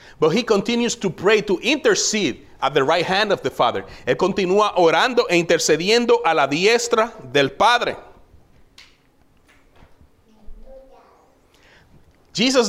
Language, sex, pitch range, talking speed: English, male, 170-235 Hz, 120 wpm